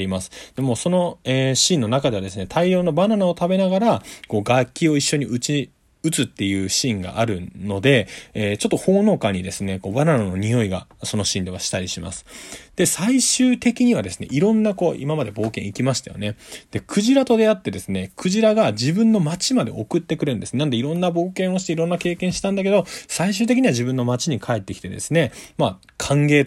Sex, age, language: male, 20-39, Japanese